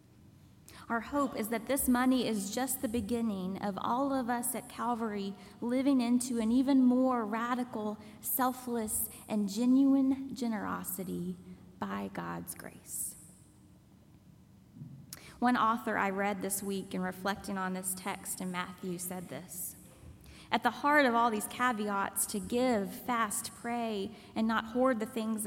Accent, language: American, English